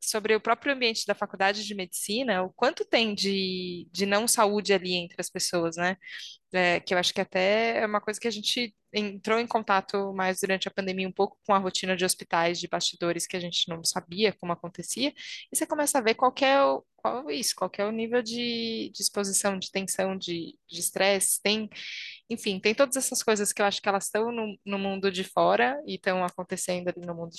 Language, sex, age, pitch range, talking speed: Portuguese, female, 20-39, 180-215 Hz, 225 wpm